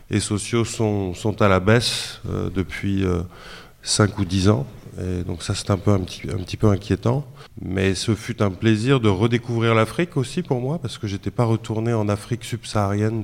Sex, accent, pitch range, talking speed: male, French, 95-115 Hz, 200 wpm